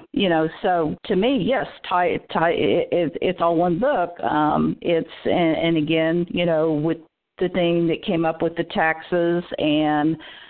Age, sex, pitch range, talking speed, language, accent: 50-69, female, 155-175 Hz, 175 wpm, English, American